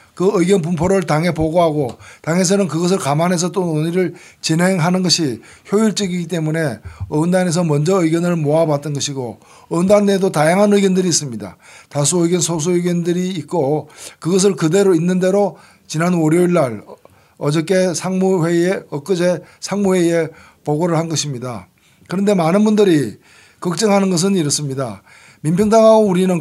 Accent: native